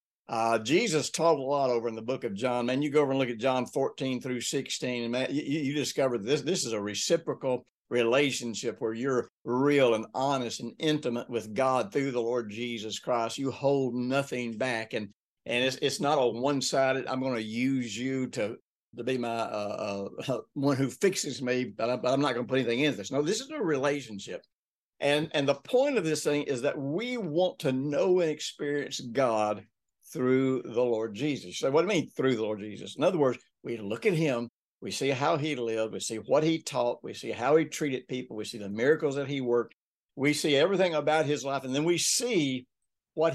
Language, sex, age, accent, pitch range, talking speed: English, male, 60-79, American, 120-145 Hz, 220 wpm